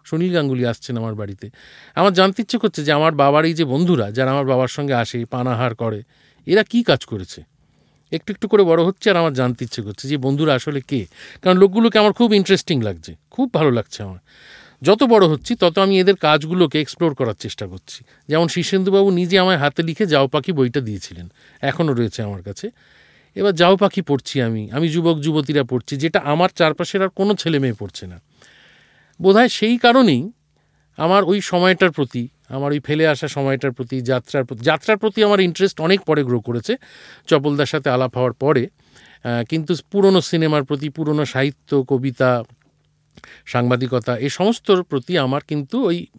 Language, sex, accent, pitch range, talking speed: Bengali, male, native, 130-180 Hz, 175 wpm